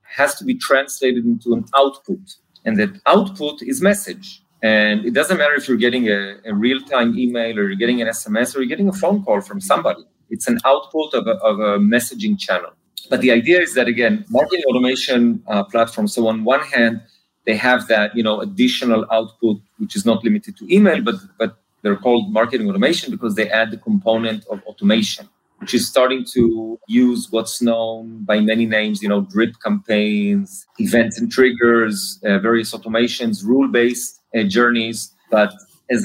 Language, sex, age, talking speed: English, male, 40-59, 180 wpm